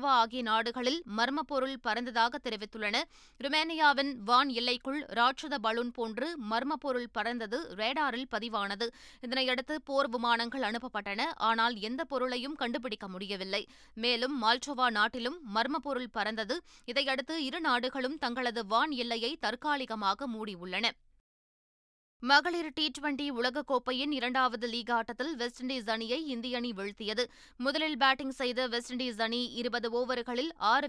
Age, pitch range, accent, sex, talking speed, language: 20-39, 230-270 Hz, native, female, 115 wpm, Tamil